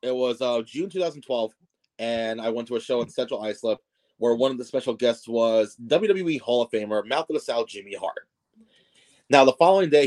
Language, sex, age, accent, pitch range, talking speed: English, male, 30-49, American, 120-150 Hz, 210 wpm